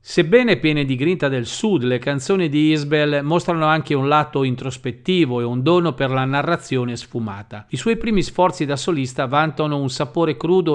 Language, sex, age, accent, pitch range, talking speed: Italian, male, 50-69, native, 130-180 Hz, 180 wpm